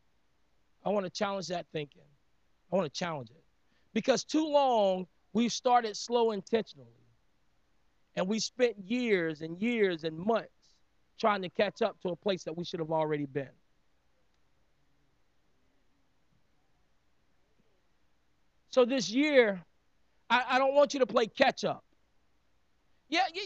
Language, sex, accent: English, male, American